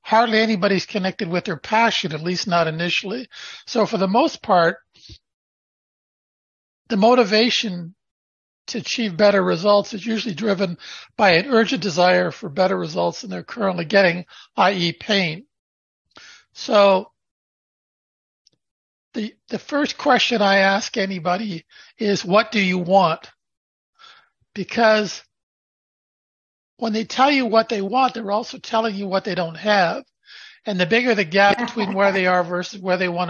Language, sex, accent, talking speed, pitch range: English, male, American, 140 wpm, 185-230 Hz